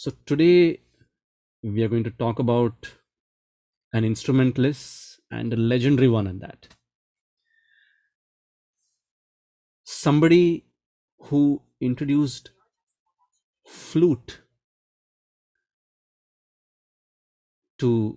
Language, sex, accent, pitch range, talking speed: English, male, Indian, 95-130 Hz, 70 wpm